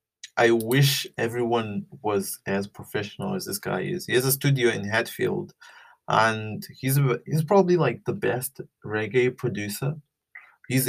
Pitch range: 105-130 Hz